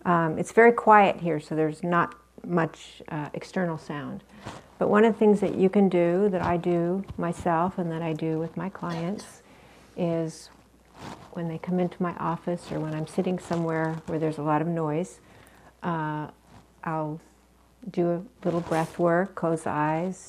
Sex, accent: female, American